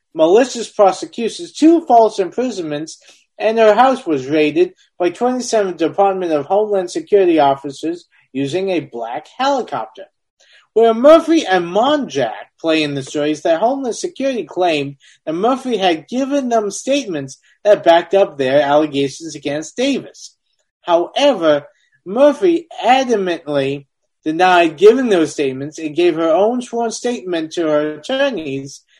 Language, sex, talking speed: English, male, 130 wpm